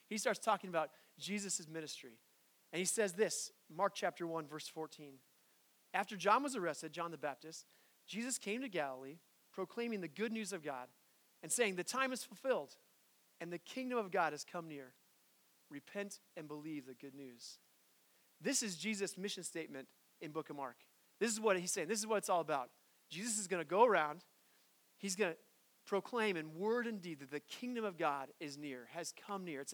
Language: English